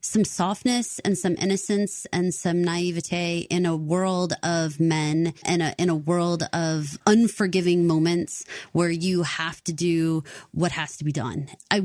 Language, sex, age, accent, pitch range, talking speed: English, female, 30-49, American, 160-190 Hz, 160 wpm